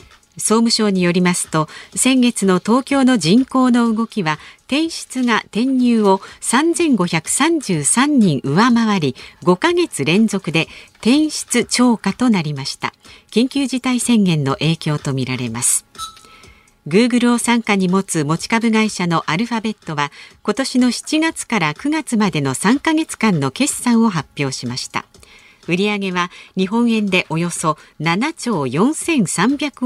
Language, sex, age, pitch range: Japanese, female, 50-69, 165-250 Hz